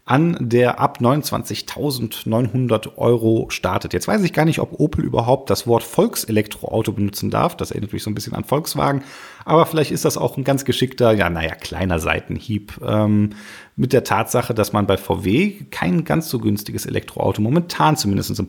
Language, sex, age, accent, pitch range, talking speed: German, male, 30-49, German, 105-140 Hz, 180 wpm